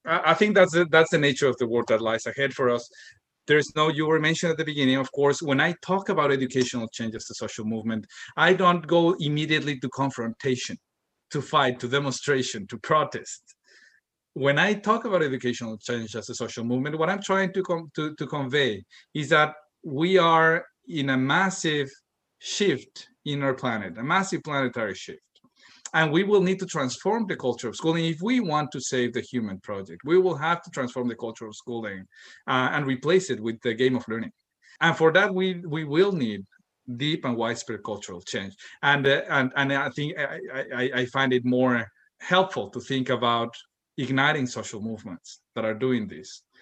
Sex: male